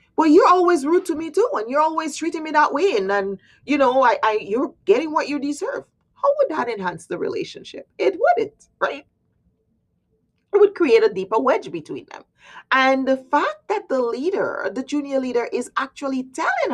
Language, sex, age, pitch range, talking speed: English, female, 30-49, 275-410 Hz, 175 wpm